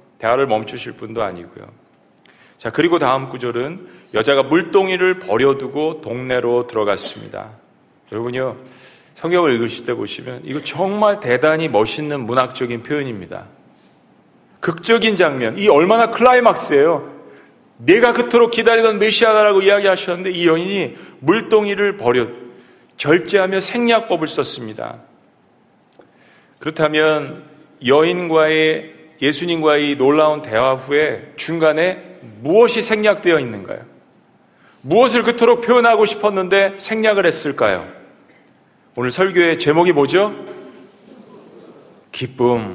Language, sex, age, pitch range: Korean, male, 40-59, 140-200 Hz